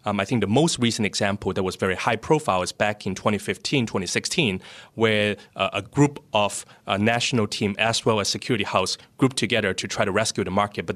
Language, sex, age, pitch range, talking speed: English, male, 30-49, 100-120 Hz, 210 wpm